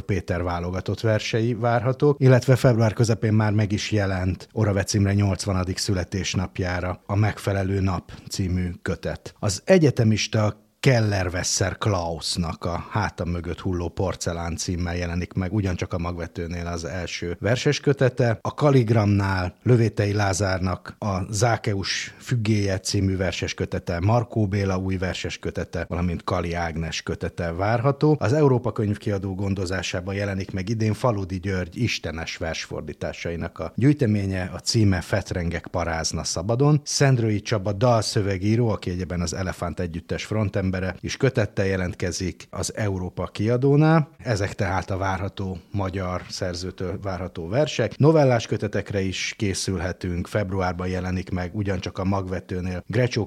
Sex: male